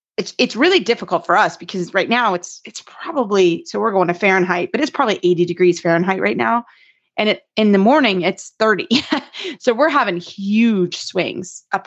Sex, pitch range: female, 180-225 Hz